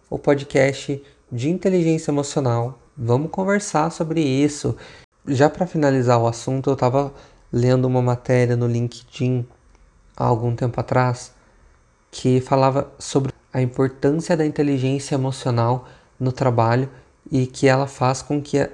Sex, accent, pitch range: male, Brazilian, 125-155 Hz